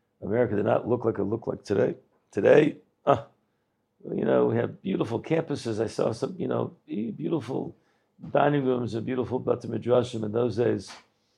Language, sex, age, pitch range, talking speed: English, male, 50-69, 110-135 Hz, 165 wpm